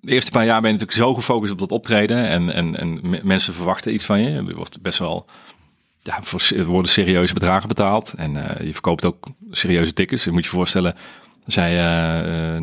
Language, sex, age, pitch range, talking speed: Dutch, male, 40-59, 90-105 Hz, 195 wpm